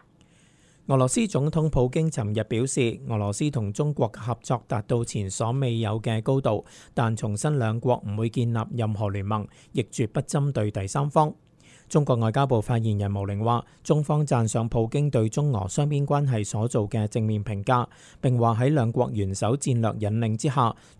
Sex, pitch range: male, 110-140 Hz